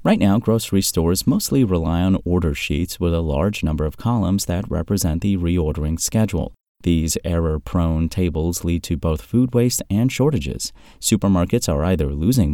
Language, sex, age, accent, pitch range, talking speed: English, male, 30-49, American, 80-110 Hz, 165 wpm